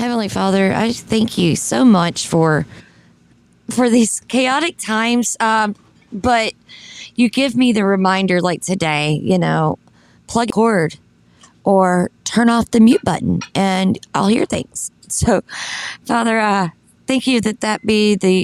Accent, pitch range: American, 165-210 Hz